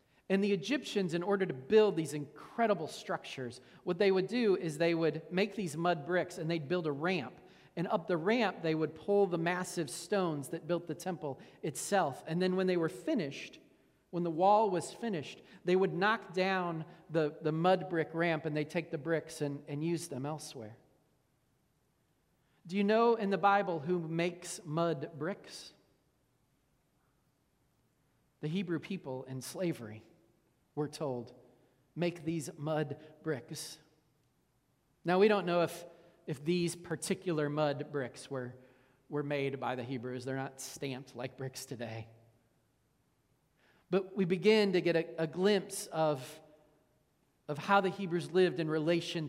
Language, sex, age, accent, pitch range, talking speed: English, male, 40-59, American, 145-185 Hz, 160 wpm